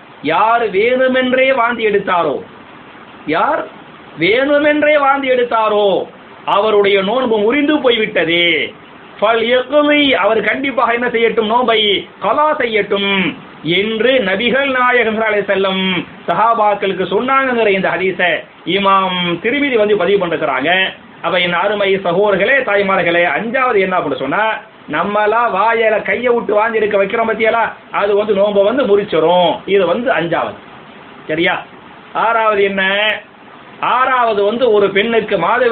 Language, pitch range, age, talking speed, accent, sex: English, 195-235 Hz, 30-49, 100 wpm, Indian, male